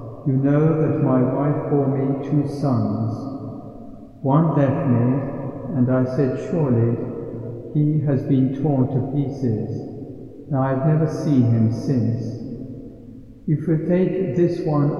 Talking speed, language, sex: 135 wpm, English, male